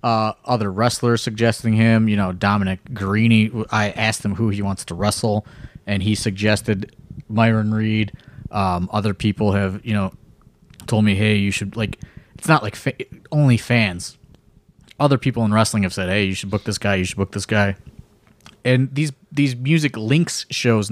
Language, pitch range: English, 105-135 Hz